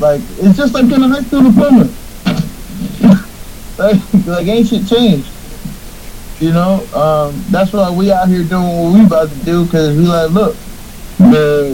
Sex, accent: male, American